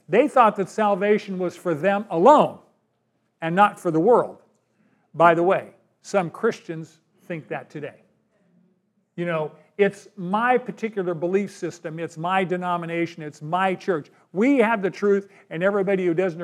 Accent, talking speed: American, 155 wpm